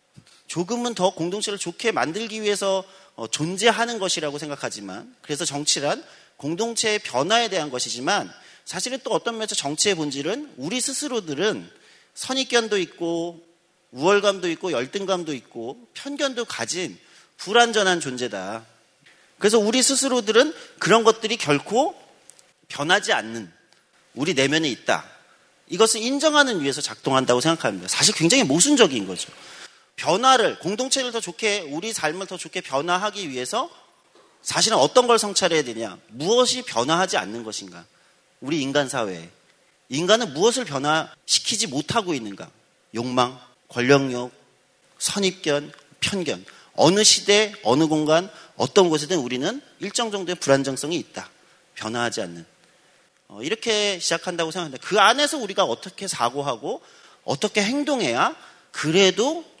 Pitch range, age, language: 145-225 Hz, 40-59, Korean